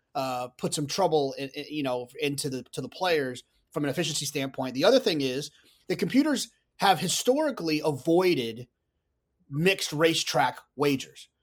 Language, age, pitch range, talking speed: English, 30-49, 135-165 Hz, 150 wpm